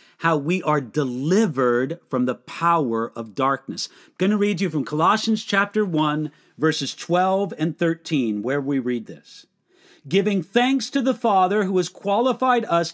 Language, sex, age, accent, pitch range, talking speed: English, male, 50-69, American, 160-225 Hz, 160 wpm